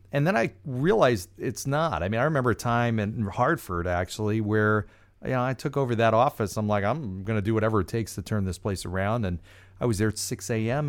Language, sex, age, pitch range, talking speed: English, male, 40-59, 95-115 Hz, 235 wpm